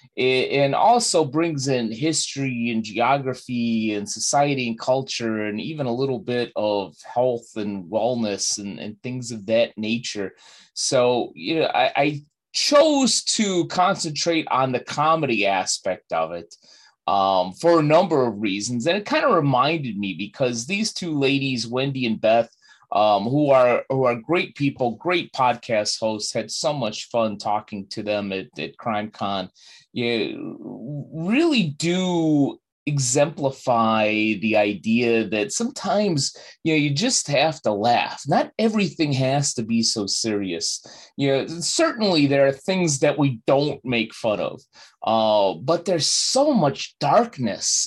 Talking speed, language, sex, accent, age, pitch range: 150 wpm, English, male, American, 30-49, 110-160 Hz